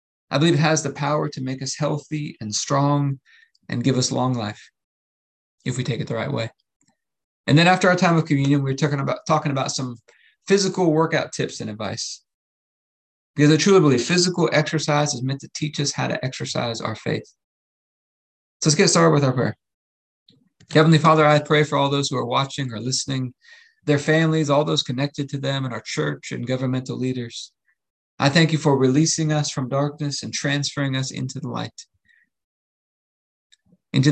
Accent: American